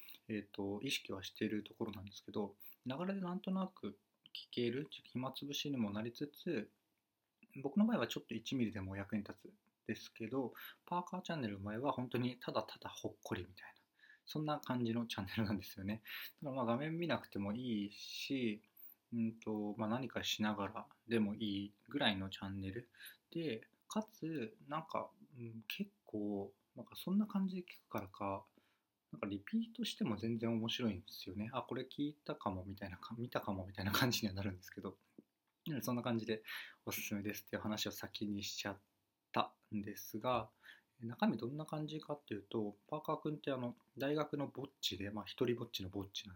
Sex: male